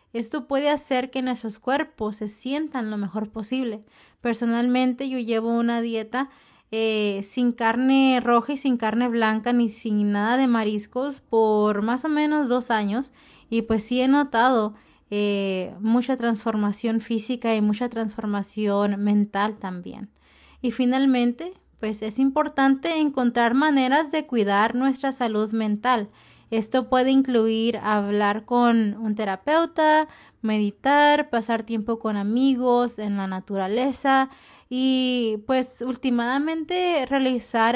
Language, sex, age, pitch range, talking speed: English, female, 20-39, 215-260 Hz, 125 wpm